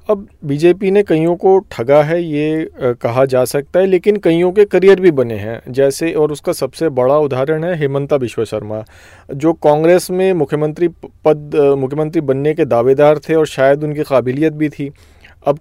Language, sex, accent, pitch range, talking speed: Hindi, male, native, 130-170 Hz, 175 wpm